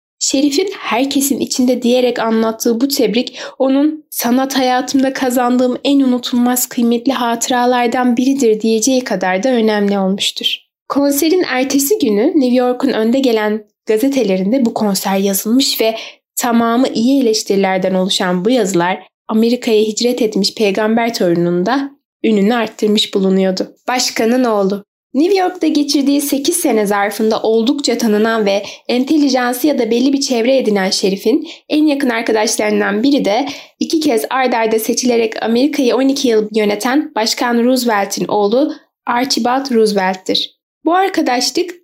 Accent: native